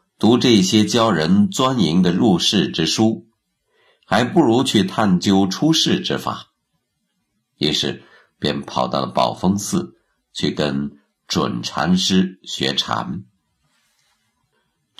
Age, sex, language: 50-69, male, Chinese